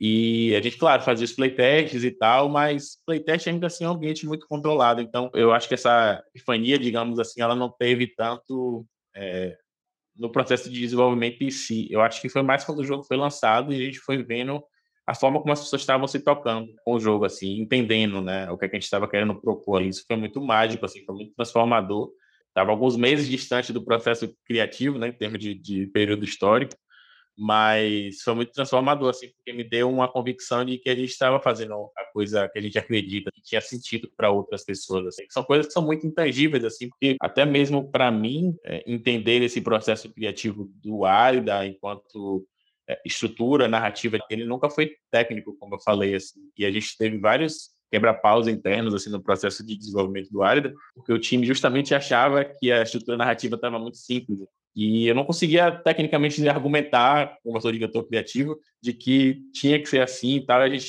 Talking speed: 200 wpm